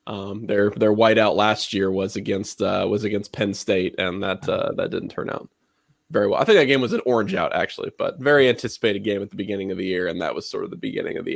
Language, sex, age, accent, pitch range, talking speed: English, male, 20-39, American, 100-120 Hz, 265 wpm